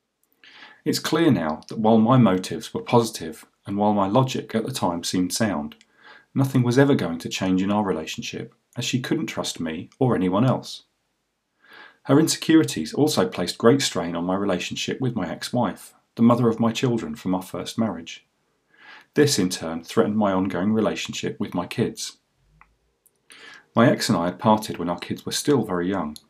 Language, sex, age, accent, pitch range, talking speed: English, male, 40-59, British, 95-120 Hz, 180 wpm